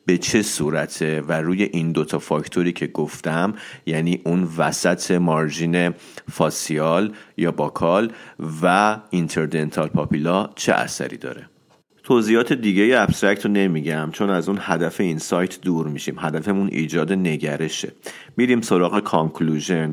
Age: 40-59